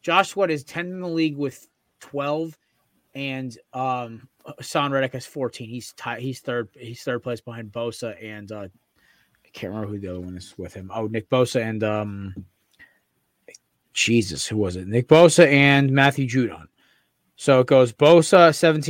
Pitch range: 125-160 Hz